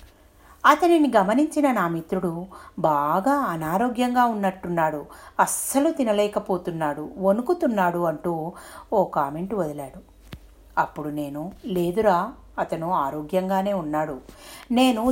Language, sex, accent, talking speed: Telugu, female, native, 85 wpm